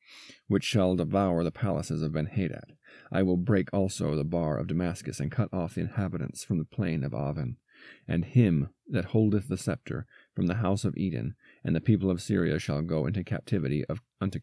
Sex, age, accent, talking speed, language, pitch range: male, 40-59, American, 195 wpm, English, 85-110 Hz